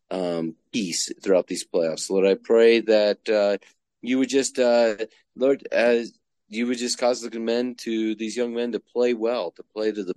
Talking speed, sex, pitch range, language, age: 190 wpm, male, 90-110 Hz, English, 40-59